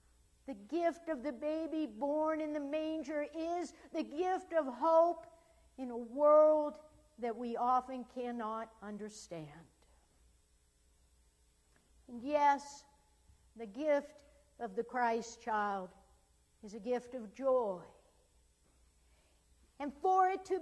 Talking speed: 115 wpm